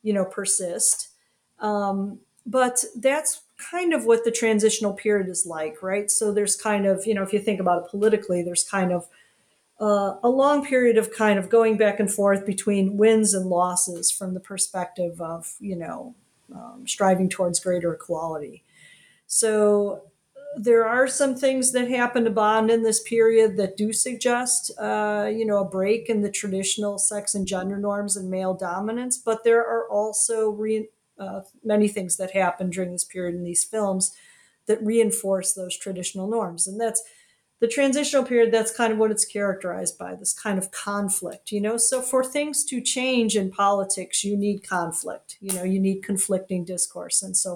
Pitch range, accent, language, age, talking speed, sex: 190-230 Hz, American, English, 40-59, 180 wpm, female